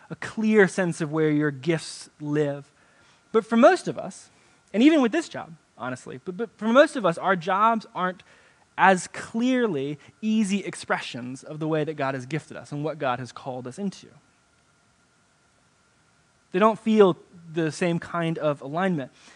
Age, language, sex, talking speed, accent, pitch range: 20-39, English, male, 170 wpm, American, 145-200 Hz